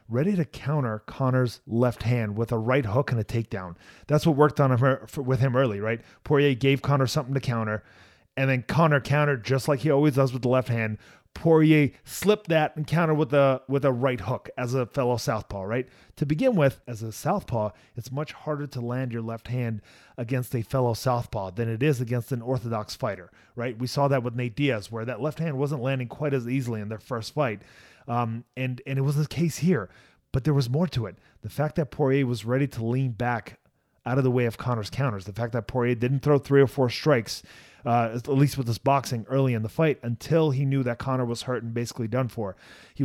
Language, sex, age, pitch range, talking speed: English, male, 30-49, 115-145 Hz, 230 wpm